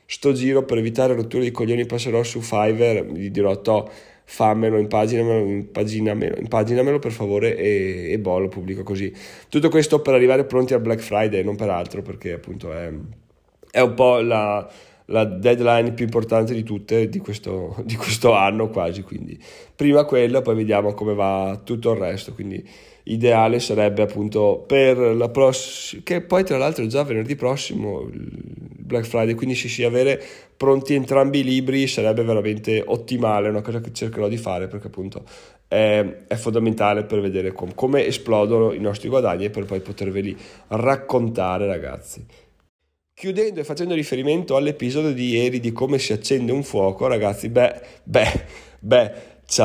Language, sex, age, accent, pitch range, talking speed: Italian, male, 30-49, native, 105-130 Hz, 165 wpm